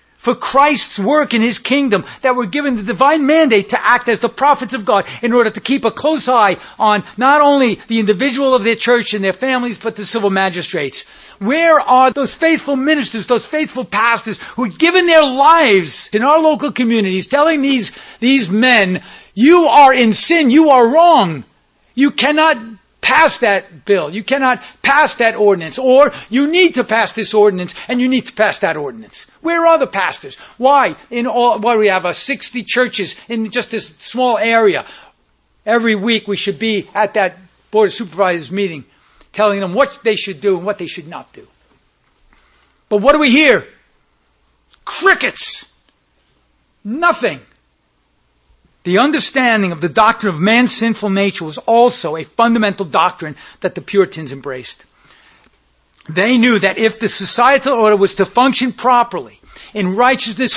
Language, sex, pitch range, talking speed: English, male, 205-275 Hz, 170 wpm